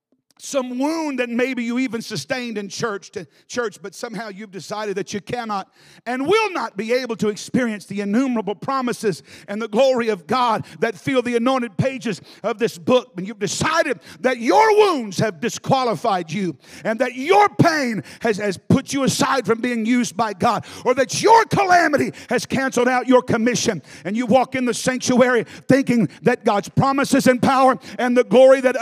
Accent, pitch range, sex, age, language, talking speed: American, 230-320 Hz, male, 50-69, English, 185 wpm